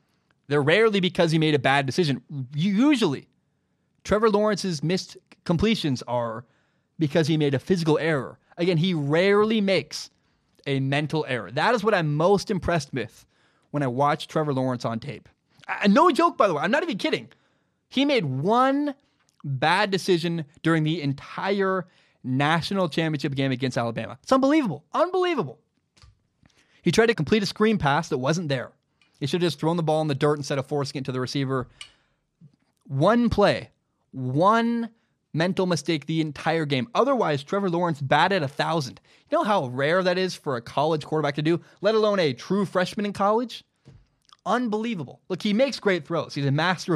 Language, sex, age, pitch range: English, male, 20-39, 140-190 Hz